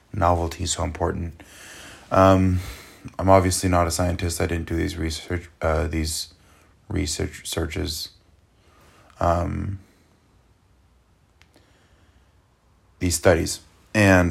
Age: 20-39